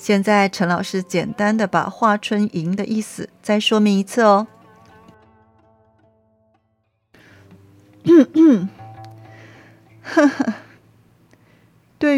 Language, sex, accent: Chinese, female, native